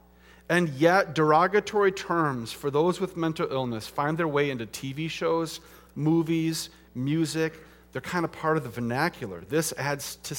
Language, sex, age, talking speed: English, male, 40-59, 155 wpm